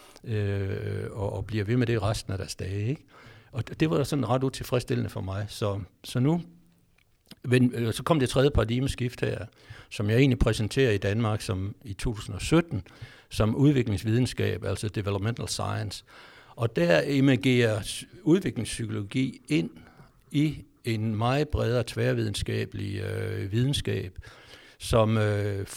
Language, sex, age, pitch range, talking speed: Danish, male, 60-79, 105-125 Hz, 135 wpm